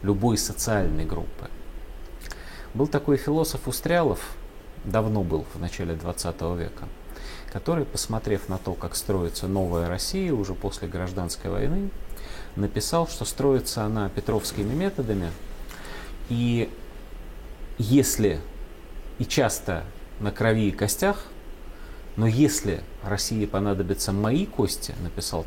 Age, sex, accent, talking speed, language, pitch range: 30-49, male, native, 110 wpm, Russian, 90-130 Hz